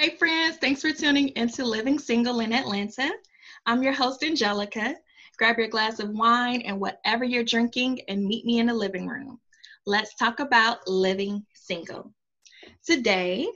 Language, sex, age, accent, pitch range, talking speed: English, female, 20-39, American, 200-255 Hz, 160 wpm